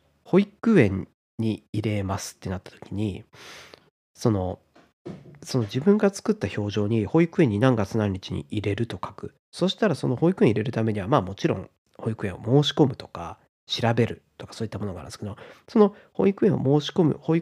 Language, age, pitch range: Japanese, 40-59, 105-155 Hz